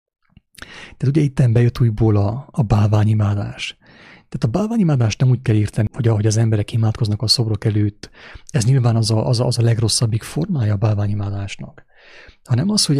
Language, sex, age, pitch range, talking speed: English, male, 30-49, 105-130 Hz, 170 wpm